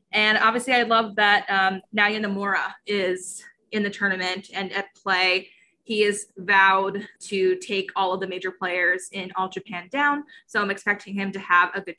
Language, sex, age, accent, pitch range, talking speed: English, female, 20-39, American, 190-215 Hz, 185 wpm